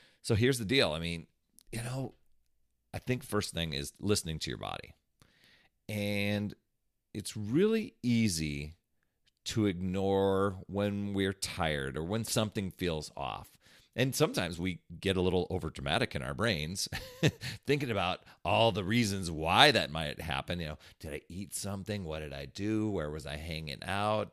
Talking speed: 165 wpm